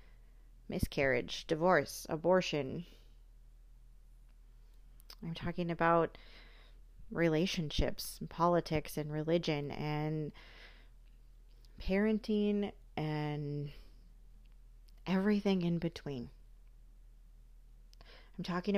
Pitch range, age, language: 150-175 Hz, 30-49, English